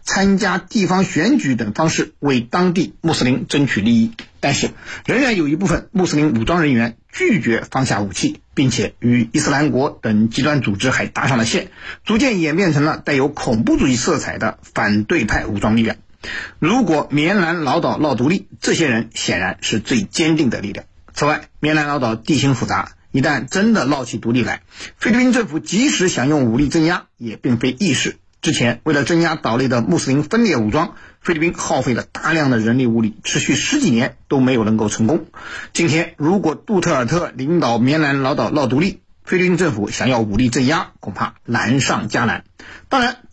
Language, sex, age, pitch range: Chinese, male, 50-69, 120-175 Hz